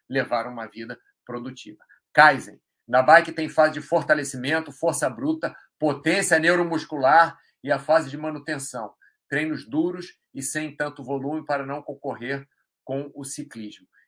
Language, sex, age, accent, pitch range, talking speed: Portuguese, male, 40-59, Brazilian, 130-160 Hz, 135 wpm